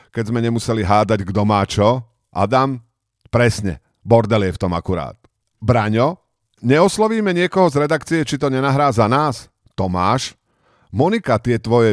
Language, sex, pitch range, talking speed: Slovak, male, 105-145 Hz, 140 wpm